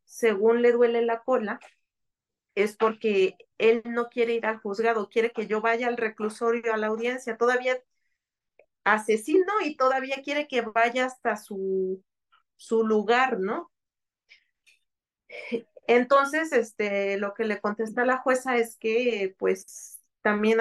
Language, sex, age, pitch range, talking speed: Spanish, female, 40-59, 210-240 Hz, 135 wpm